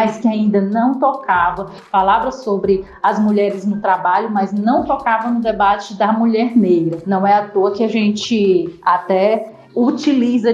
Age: 40-59